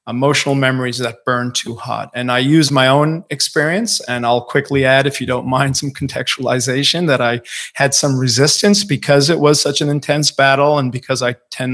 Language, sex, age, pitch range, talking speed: English, male, 40-59, 125-150 Hz, 195 wpm